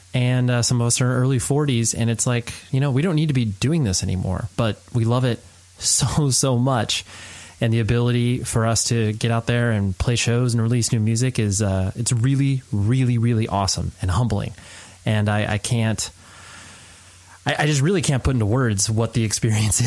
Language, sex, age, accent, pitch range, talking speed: English, male, 30-49, American, 105-125 Hz, 205 wpm